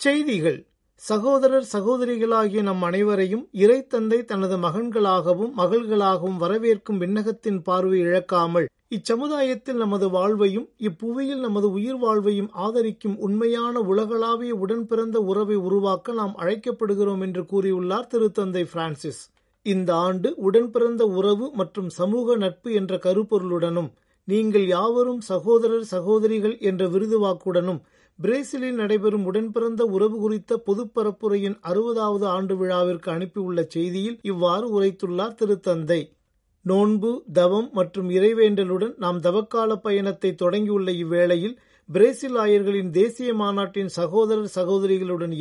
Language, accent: Tamil, native